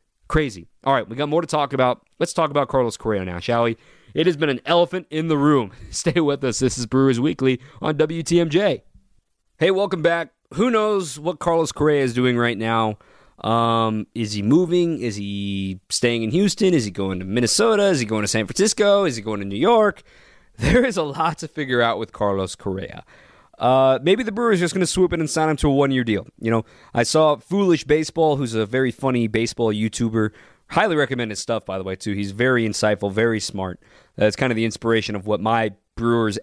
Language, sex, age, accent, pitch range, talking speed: English, male, 20-39, American, 110-160 Hz, 220 wpm